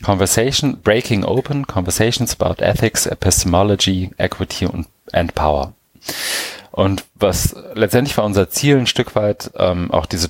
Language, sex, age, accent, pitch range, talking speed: German, male, 30-49, German, 85-100 Hz, 130 wpm